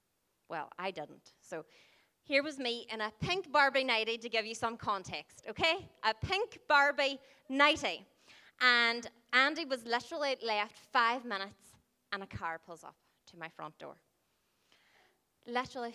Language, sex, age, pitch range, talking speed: English, female, 20-39, 210-275 Hz, 145 wpm